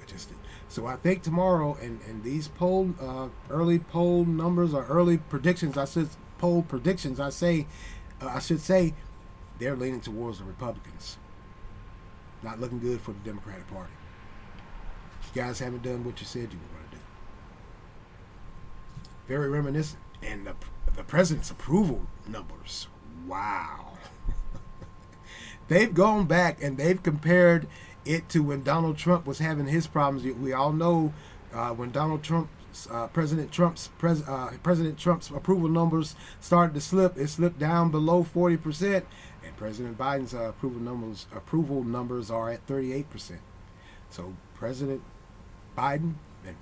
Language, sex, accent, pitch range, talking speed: English, male, American, 105-165 Hz, 145 wpm